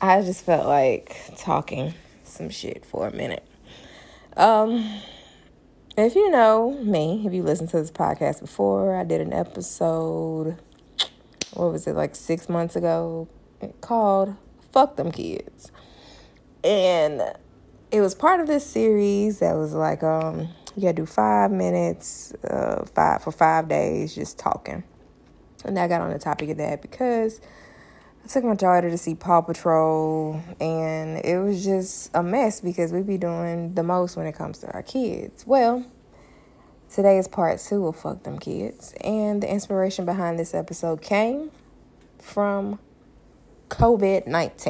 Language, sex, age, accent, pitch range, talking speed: English, female, 20-39, American, 160-210 Hz, 150 wpm